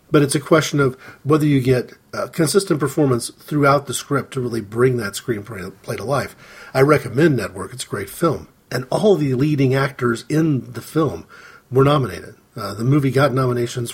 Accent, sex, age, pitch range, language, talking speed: American, male, 40-59, 120-155 Hz, English, 180 wpm